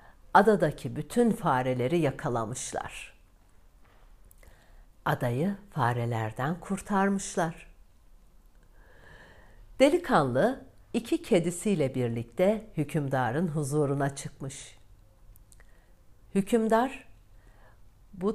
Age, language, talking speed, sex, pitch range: 60-79, Turkish, 50 wpm, female, 120-190 Hz